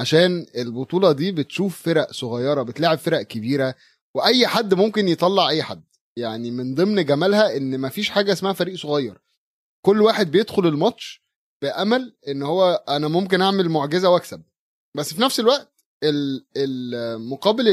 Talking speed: 145 wpm